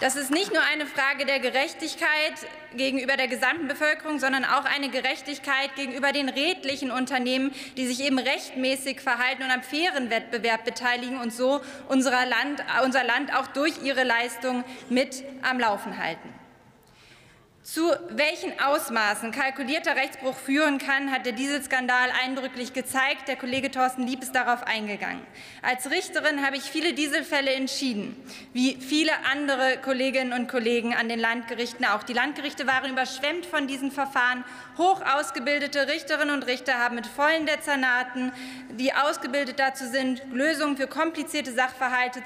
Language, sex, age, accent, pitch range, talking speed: German, female, 20-39, German, 250-285 Hz, 150 wpm